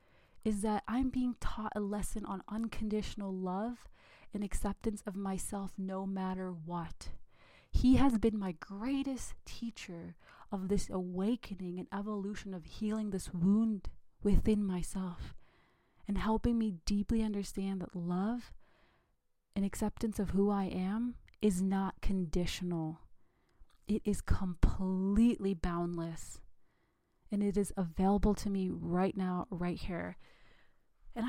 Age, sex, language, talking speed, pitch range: 30-49, female, English, 125 wpm, 185-215 Hz